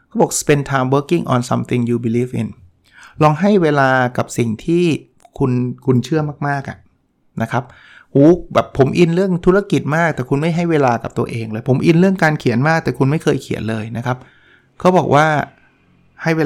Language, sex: Thai, male